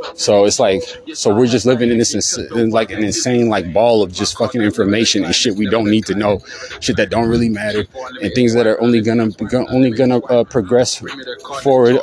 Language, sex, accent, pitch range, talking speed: English, male, American, 110-135 Hz, 210 wpm